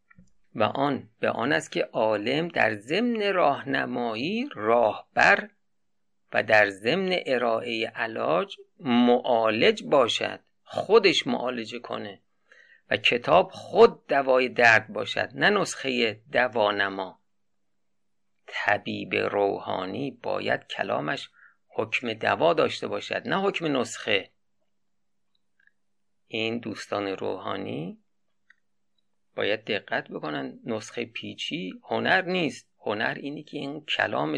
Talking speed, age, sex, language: 100 wpm, 50-69, male, Persian